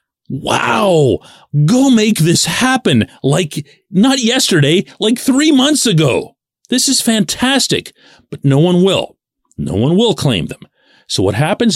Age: 40-59